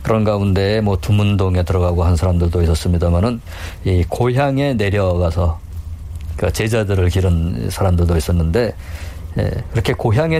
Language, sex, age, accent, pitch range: Korean, male, 40-59, native, 85-110 Hz